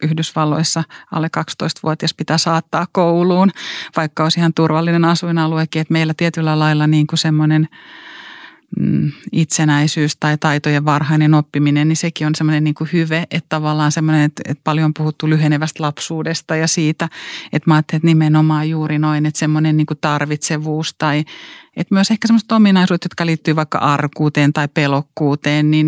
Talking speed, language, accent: 145 wpm, Finnish, native